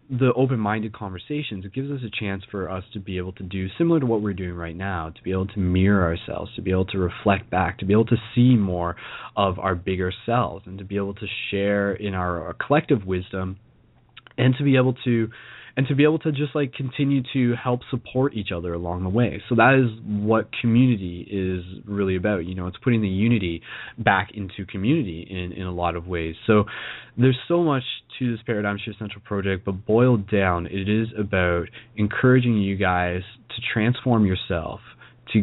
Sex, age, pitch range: male, 20-39, 95-120 Hz